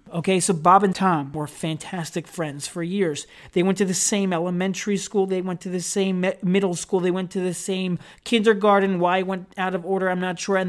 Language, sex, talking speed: English, male, 220 wpm